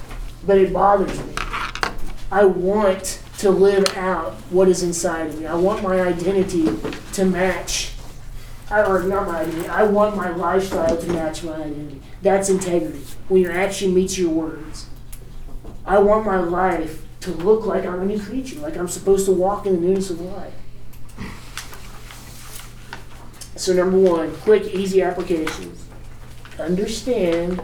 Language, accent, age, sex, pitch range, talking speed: English, American, 20-39, male, 165-200 Hz, 150 wpm